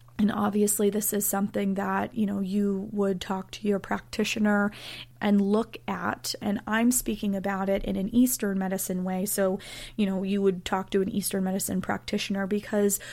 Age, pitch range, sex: 30-49, 185-215 Hz, female